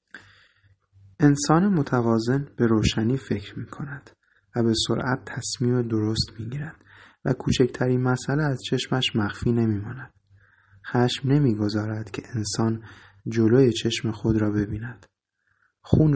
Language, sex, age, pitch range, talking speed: Persian, male, 30-49, 105-130 Hz, 120 wpm